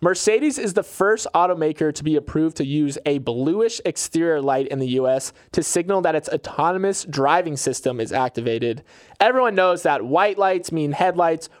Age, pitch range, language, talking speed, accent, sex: 20-39, 140-180 Hz, English, 170 wpm, American, male